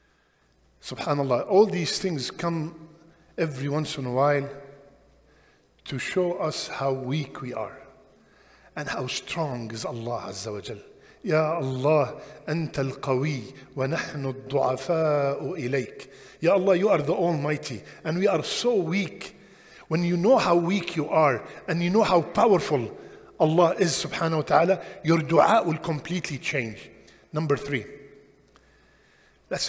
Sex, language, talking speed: male, English, 140 wpm